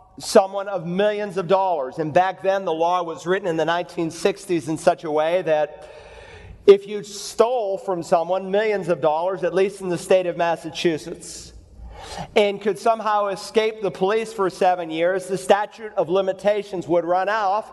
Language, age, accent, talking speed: English, 40-59, American, 175 wpm